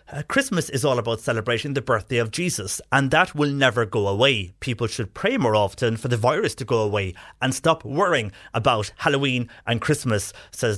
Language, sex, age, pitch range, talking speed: English, male, 30-49, 110-130 Hz, 190 wpm